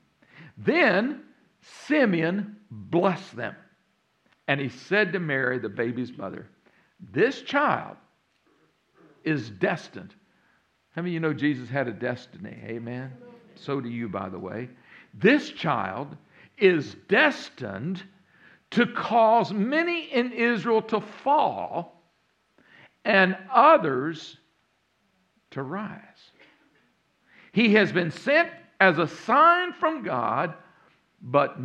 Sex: male